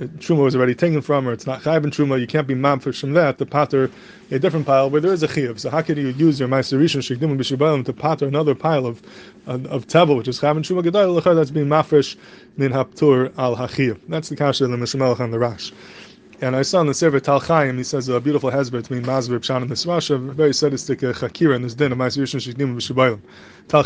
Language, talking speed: English, 235 wpm